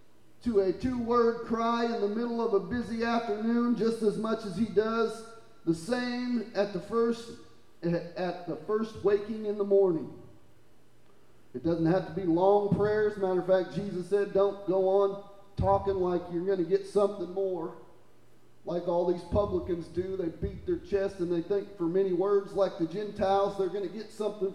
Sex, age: male, 40-59